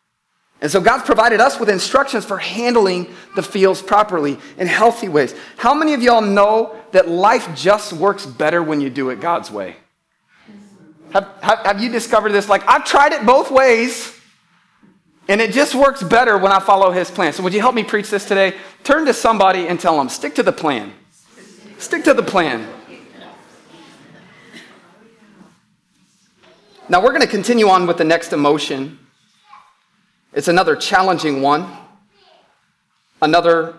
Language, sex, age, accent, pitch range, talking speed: English, male, 30-49, American, 160-210 Hz, 160 wpm